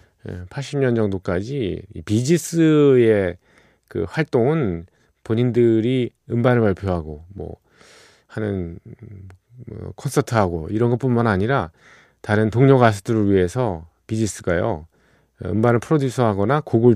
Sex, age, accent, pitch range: male, 40-59, native, 95-125 Hz